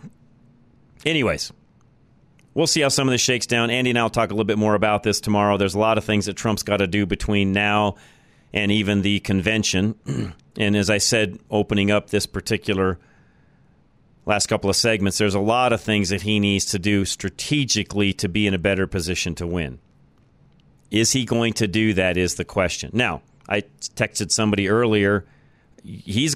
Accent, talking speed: American, 190 wpm